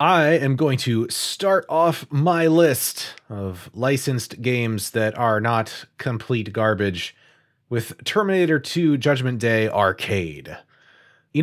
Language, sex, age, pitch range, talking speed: English, male, 30-49, 95-130 Hz, 120 wpm